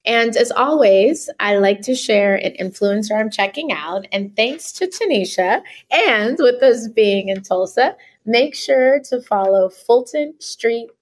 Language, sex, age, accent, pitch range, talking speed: English, female, 30-49, American, 195-255 Hz, 150 wpm